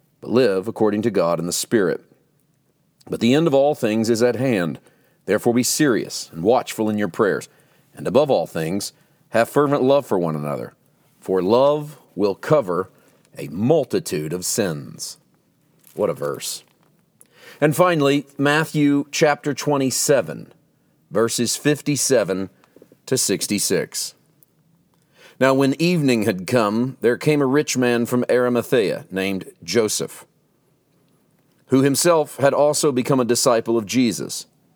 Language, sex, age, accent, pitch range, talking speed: English, male, 40-59, American, 110-145 Hz, 135 wpm